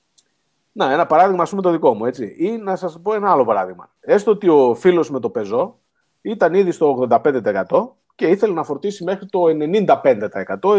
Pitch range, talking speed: 130-200 Hz, 190 wpm